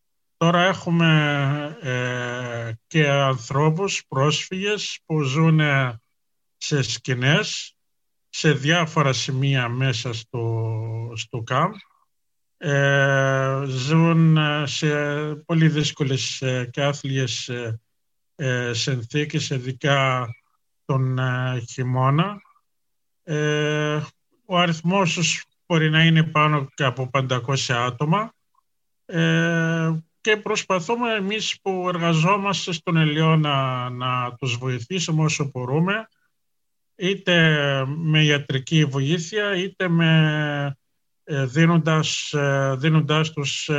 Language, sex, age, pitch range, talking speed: Greek, male, 50-69, 135-160 Hz, 90 wpm